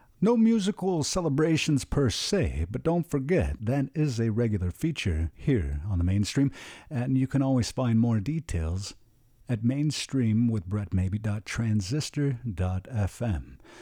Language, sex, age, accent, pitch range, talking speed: English, male, 50-69, American, 100-150 Hz, 115 wpm